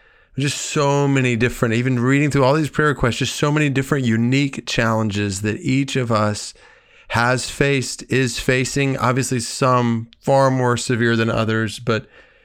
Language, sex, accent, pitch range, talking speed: English, male, American, 100-130 Hz, 160 wpm